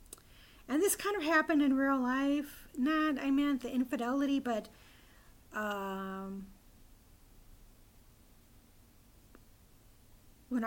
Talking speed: 90 wpm